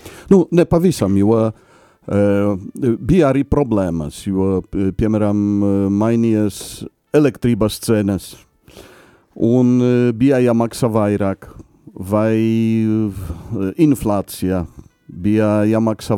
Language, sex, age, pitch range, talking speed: English, male, 50-69, 100-120 Hz, 90 wpm